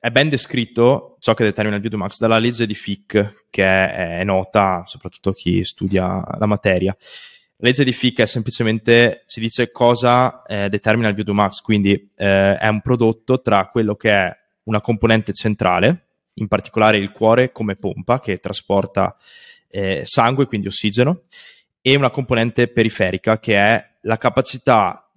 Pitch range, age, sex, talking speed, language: 100-120 Hz, 20-39, male, 155 wpm, Italian